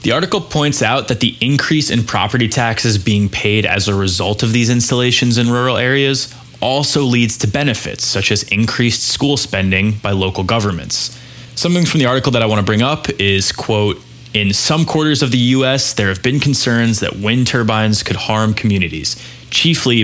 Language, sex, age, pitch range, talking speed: English, male, 20-39, 100-125 Hz, 185 wpm